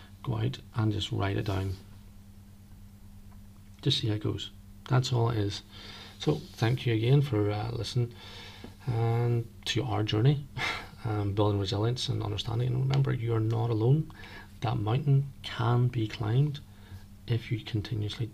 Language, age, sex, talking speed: English, 40-59, male, 150 wpm